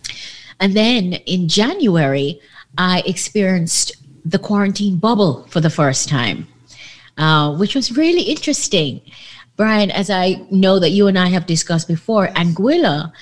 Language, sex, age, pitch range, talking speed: English, female, 30-49, 150-200 Hz, 135 wpm